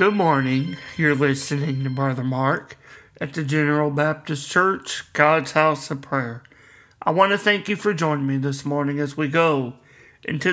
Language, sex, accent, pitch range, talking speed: English, male, American, 135-170 Hz, 170 wpm